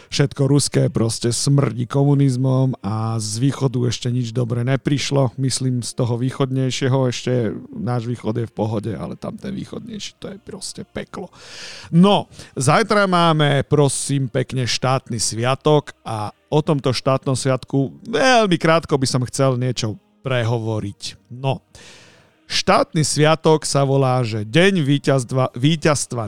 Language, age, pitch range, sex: Slovak, 50-69, 120-160 Hz, male